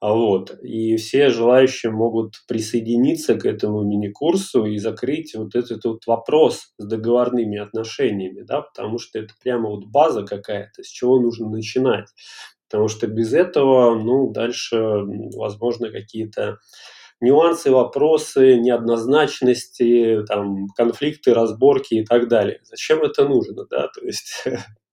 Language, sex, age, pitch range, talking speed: Russian, male, 20-39, 110-130 Hz, 125 wpm